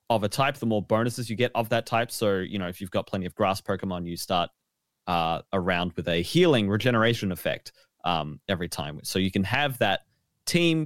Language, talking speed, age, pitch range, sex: English, 215 wpm, 20-39, 95-130 Hz, male